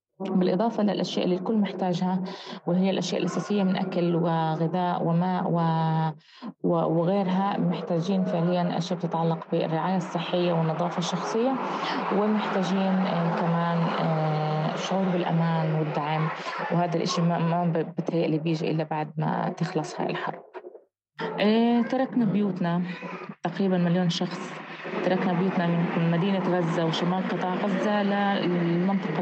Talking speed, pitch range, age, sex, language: 110 wpm, 170-190 Hz, 20-39, female, Arabic